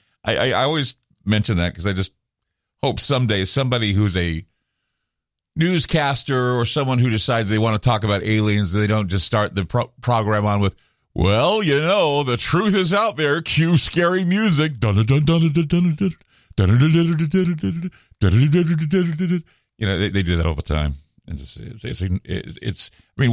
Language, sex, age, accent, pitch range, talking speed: English, male, 50-69, American, 105-160 Hz, 150 wpm